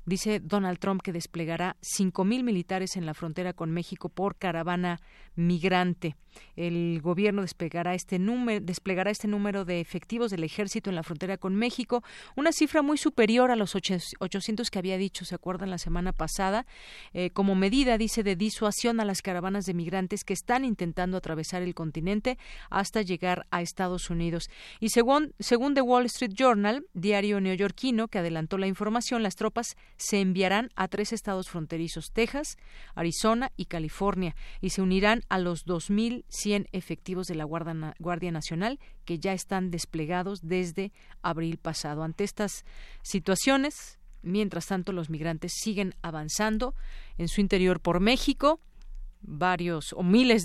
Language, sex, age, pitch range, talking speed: Spanish, female, 40-59, 175-210 Hz, 155 wpm